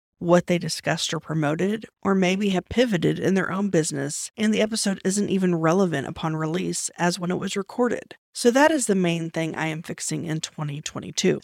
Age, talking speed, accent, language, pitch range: 40-59, 195 wpm, American, English, 170-215 Hz